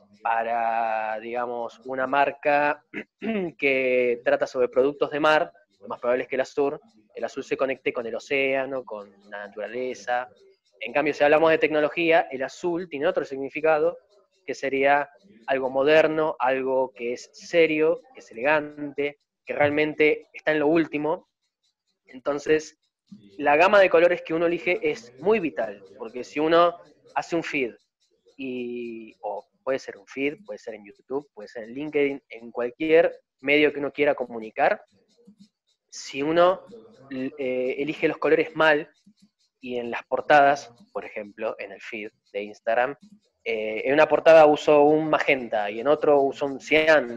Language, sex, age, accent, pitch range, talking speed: Spanish, male, 20-39, Argentinian, 130-170 Hz, 160 wpm